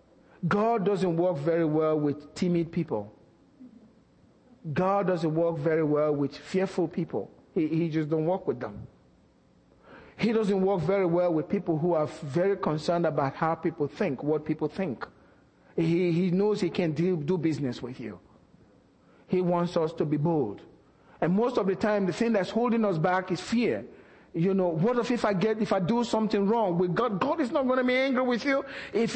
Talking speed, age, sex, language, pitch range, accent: 190 wpm, 50-69, male, English, 165-240 Hz, Nigerian